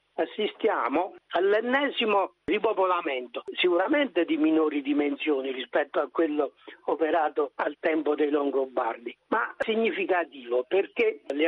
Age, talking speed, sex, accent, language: 60-79, 100 wpm, male, native, Italian